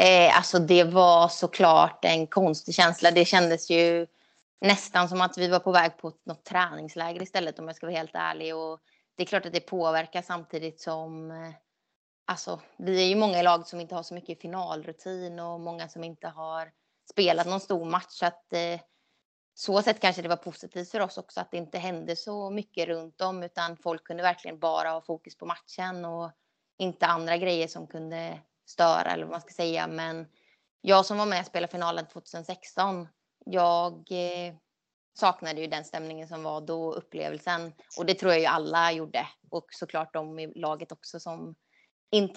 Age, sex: 20-39, female